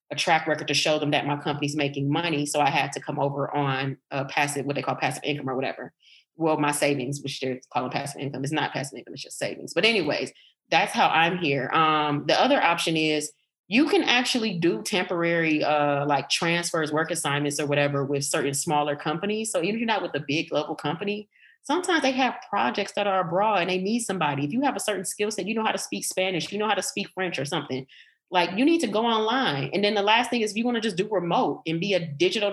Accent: American